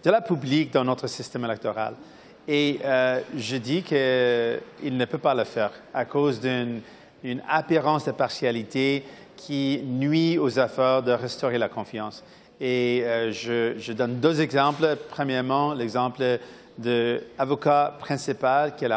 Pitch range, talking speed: 125-150 Hz, 140 wpm